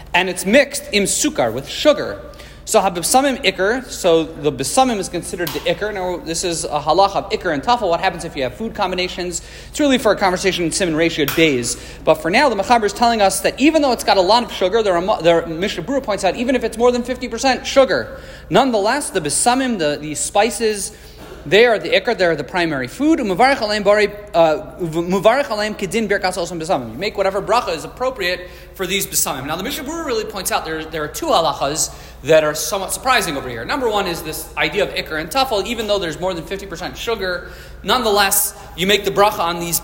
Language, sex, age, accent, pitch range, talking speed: English, male, 40-59, American, 170-235 Hz, 205 wpm